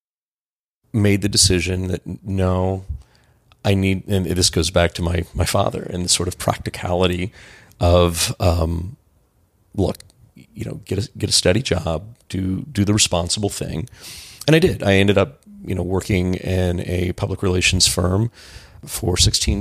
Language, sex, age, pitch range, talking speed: English, male, 30-49, 90-105 Hz, 160 wpm